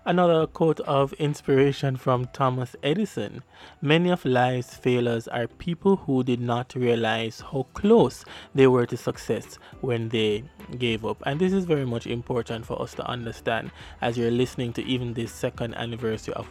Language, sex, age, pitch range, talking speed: English, male, 20-39, 115-140 Hz, 165 wpm